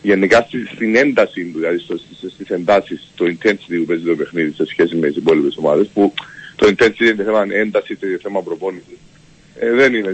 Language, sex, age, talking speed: Greek, male, 50-69, 190 wpm